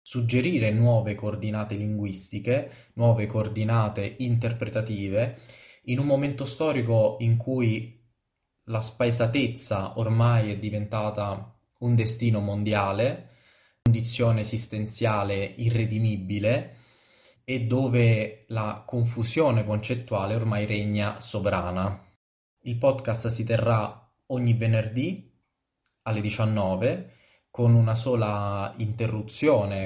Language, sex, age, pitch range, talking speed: Italian, male, 20-39, 105-120 Hz, 90 wpm